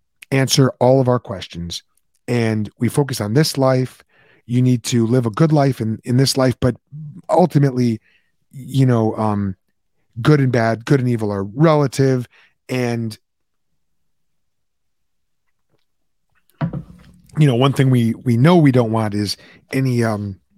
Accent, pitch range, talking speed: American, 110-140 Hz, 145 wpm